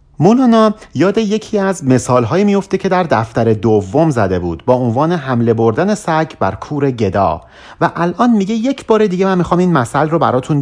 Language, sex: Persian, male